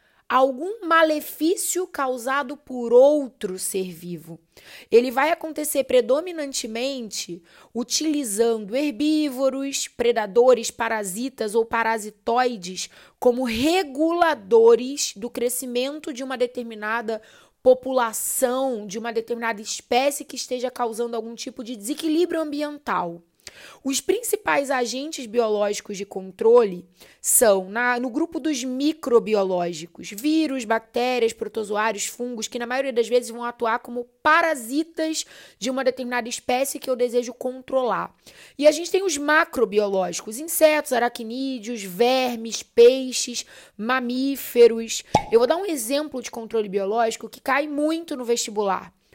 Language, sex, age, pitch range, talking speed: Portuguese, female, 20-39, 230-285 Hz, 115 wpm